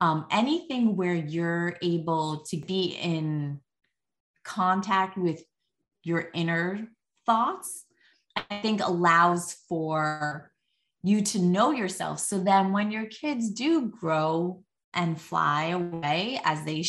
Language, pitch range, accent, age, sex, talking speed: English, 160-205 Hz, American, 20-39, female, 115 wpm